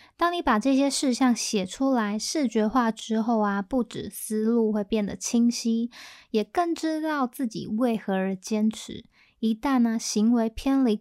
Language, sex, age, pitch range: Chinese, female, 20-39, 210-255 Hz